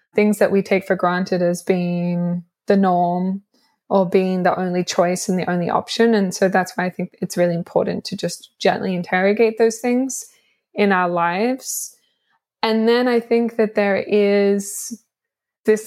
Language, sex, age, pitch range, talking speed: English, female, 20-39, 180-210 Hz, 170 wpm